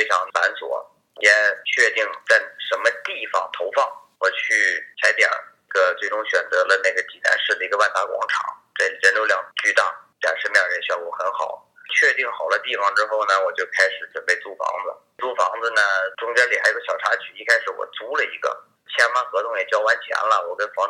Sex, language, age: male, Chinese, 30-49